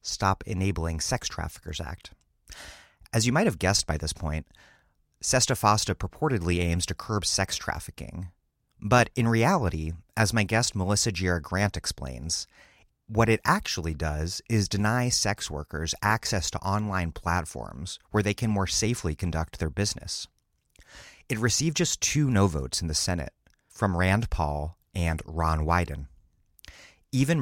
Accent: American